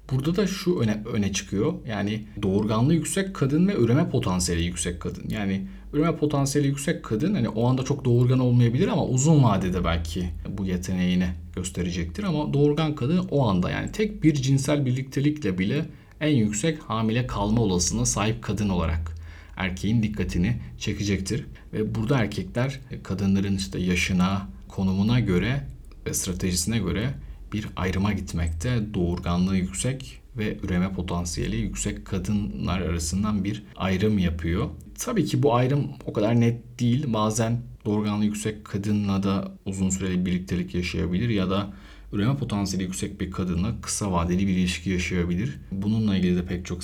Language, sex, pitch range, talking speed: Turkish, male, 90-120 Hz, 145 wpm